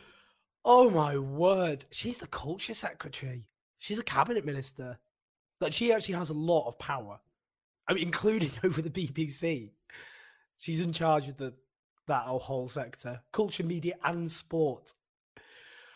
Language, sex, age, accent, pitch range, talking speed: English, male, 20-39, British, 145-200 Hz, 140 wpm